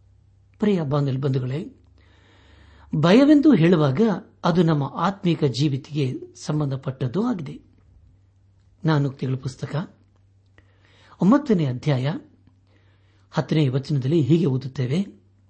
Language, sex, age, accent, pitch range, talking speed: Kannada, male, 60-79, native, 100-160 Hz, 70 wpm